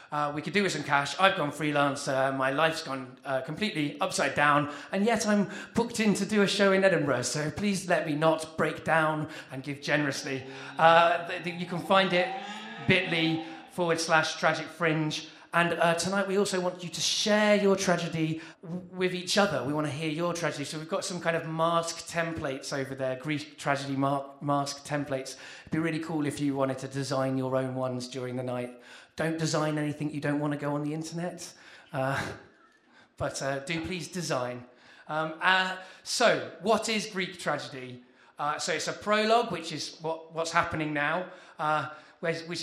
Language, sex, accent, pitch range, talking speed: English, male, British, 145-180 Hz, 185 wpm